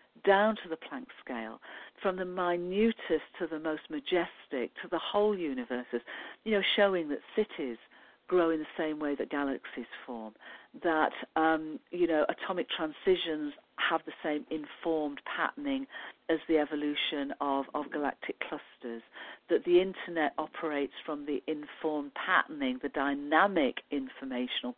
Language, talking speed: English, 140 wpm